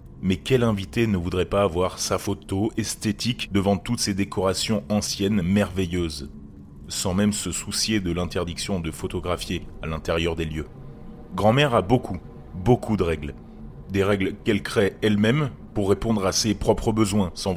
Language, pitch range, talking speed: French, 90-115 Hz, 155 wpm